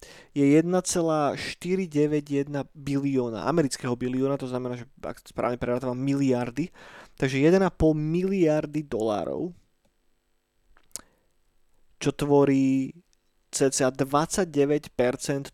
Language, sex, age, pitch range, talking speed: Slovak, male, 20-39, 130-155 Hz, 75 wpm